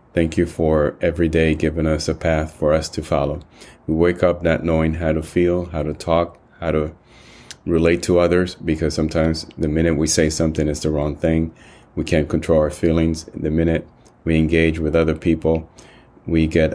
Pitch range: 75-85 Hz